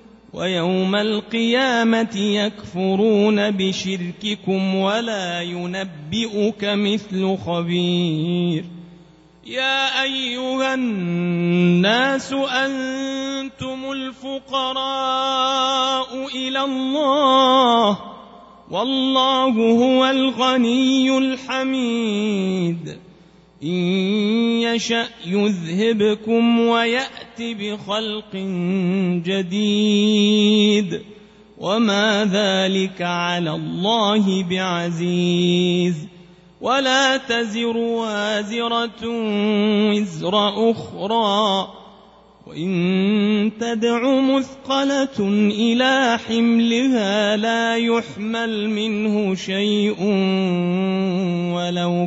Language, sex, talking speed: Arabic, male, 50 wpm